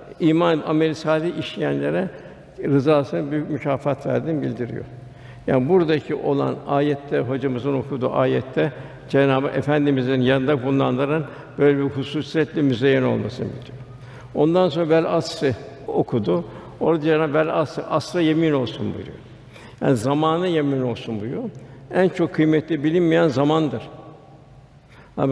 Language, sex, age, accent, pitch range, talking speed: Turkish, male, 60-79, native, 135-165 Hz, 110 wpm